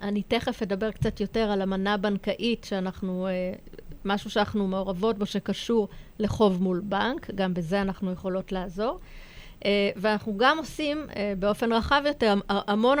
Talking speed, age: 130 wpm, 30-49